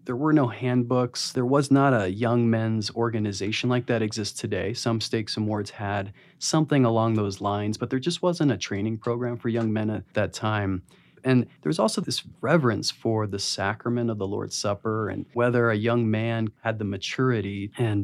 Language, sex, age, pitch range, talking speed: English, male, 30-49, 105-125 Hz, 195 wpm